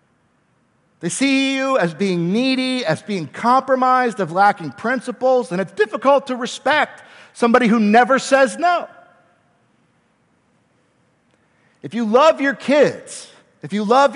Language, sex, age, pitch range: English, male, 50-69, 180-250 Hz